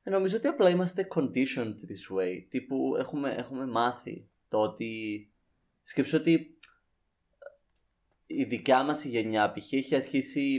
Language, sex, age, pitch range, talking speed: Greek, male, 20-39, 115-155 Hz, 130 wpm